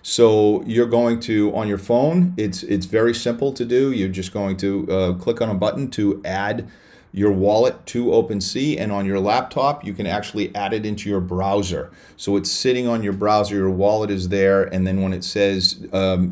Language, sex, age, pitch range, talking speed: English, male, 40-59, 95-115 Hz, 205 wpm